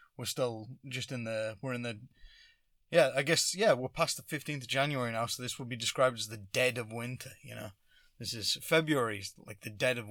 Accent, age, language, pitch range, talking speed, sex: British, 20-39, English, 105-130 Hz, 225 wpm, male